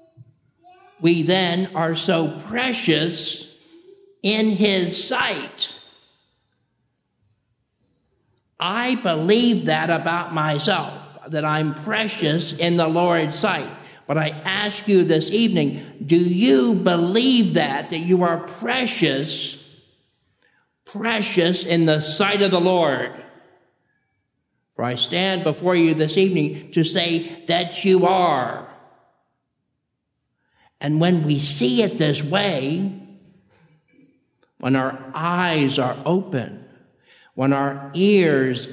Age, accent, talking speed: 50-69, American, 105 wpm